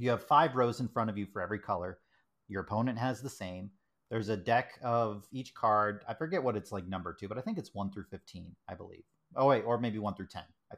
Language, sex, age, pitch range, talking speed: English, male, 30-49, 105-145 Hz, 255 wpm